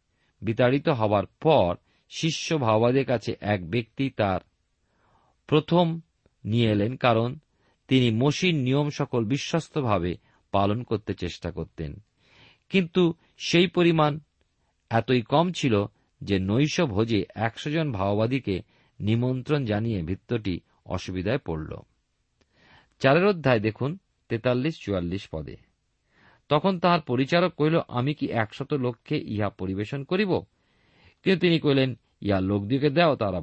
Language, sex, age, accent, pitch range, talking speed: Bengali, male, 50-69, native, 100-150 Hz, 105 wpm